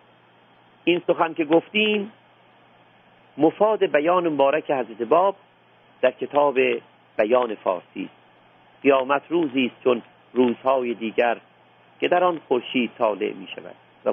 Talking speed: 120 wpm